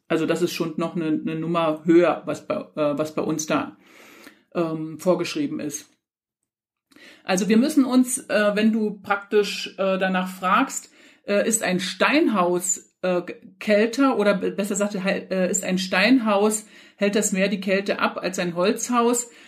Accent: German